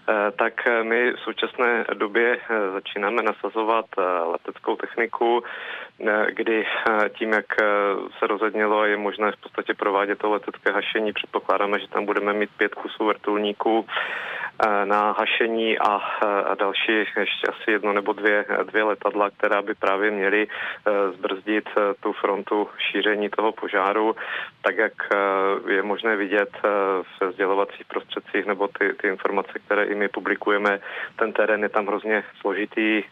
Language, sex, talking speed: Czech, male, 130 wpm